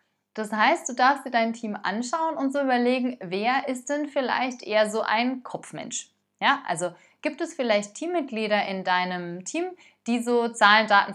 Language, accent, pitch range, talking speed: German, German, 190-260 Hz, 170 wpm